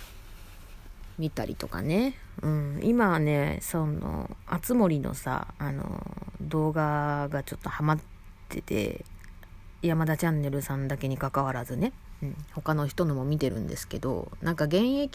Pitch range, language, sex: 100-160 Hz, Japanese, female